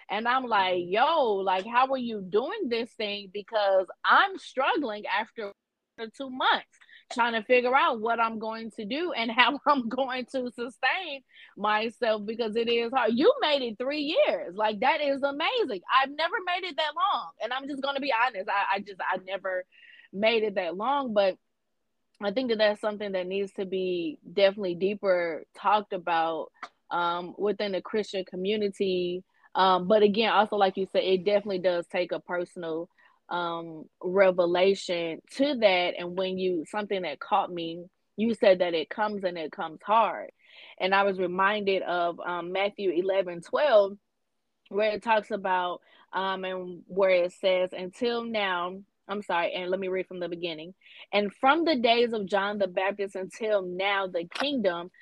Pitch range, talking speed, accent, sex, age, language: 185-235 Hz, 175 wpm, American, female, 20-39, English